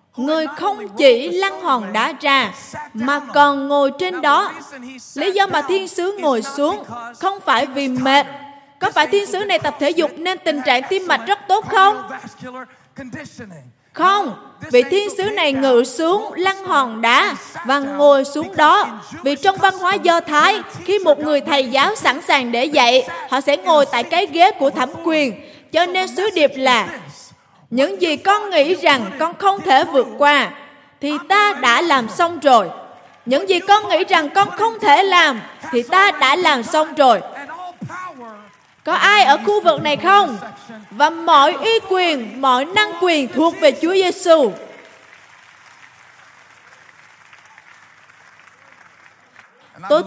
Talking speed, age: 160 wpm, 20-39